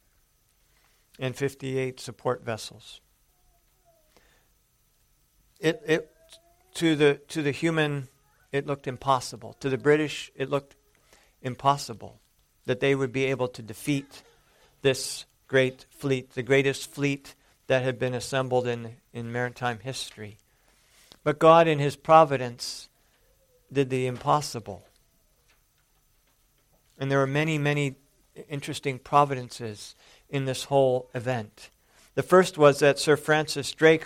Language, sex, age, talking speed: English, male, 50-69, 120 wpm